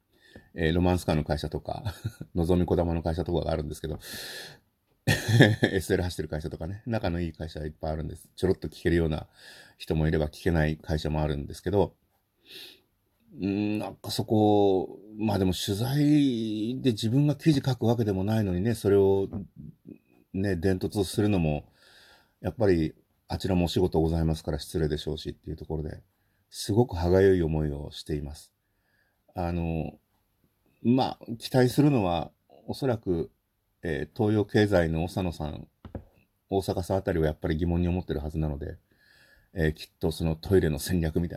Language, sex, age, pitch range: Japanese, male, 40-59, 80-105 Hz